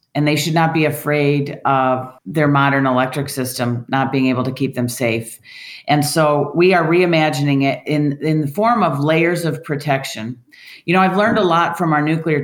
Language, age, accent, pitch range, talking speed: English, 40-59, American, 135-160 Hz, 200 wpm